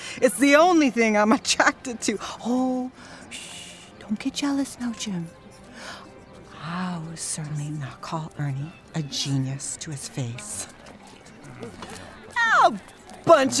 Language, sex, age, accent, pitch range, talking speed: English, female, 40-59, American, 155-255 Hz, 115 wpm